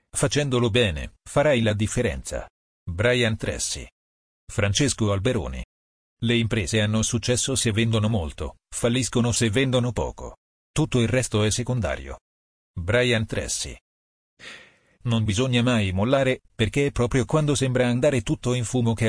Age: 40-59